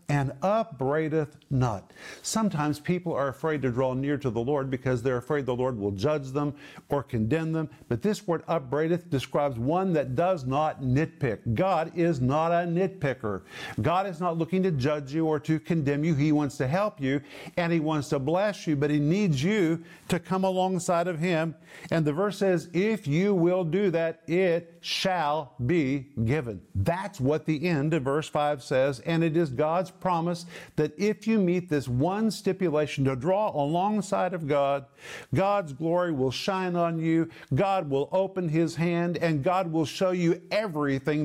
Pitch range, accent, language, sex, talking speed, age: 140-175 Hz, American, English, male, 180 wpm, 50-69